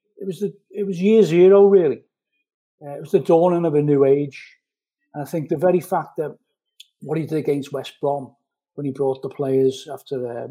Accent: British